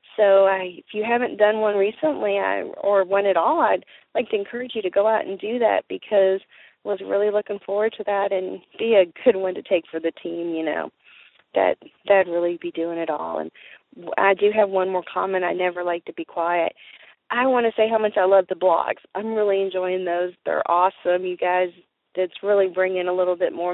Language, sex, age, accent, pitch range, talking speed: English, female, 30-49, American, 180-205 Hz, 225 wpm